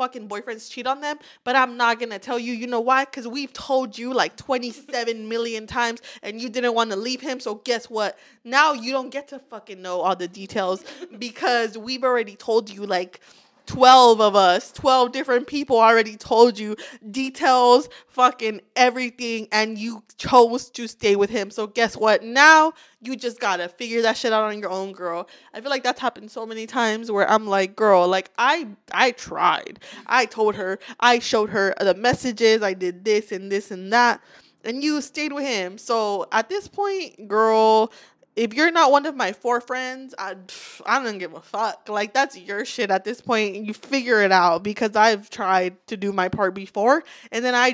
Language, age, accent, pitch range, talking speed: English, 20-39, American, 210-260 Hz, 200 wpm